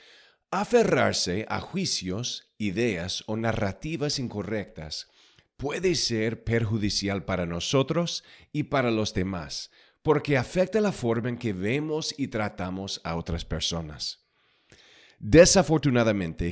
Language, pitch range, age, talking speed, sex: English, 100-140 Hz, 40-59, 105 wpm, male